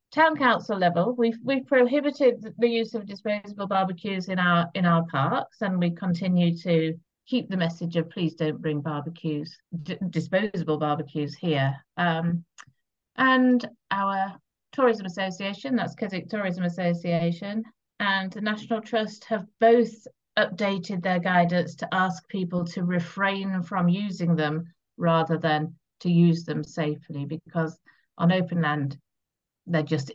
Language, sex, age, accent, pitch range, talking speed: English, female, 50-69, British, 170-215 Hz, 135 wpm